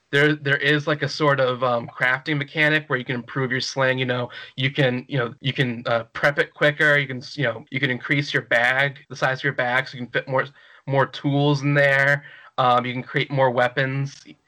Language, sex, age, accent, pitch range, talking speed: English, male, 20-39, American, 125-145 Hz, 235 wpm